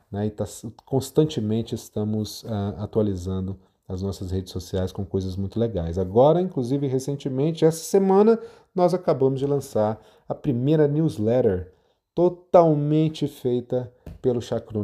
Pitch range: 105-135 Hz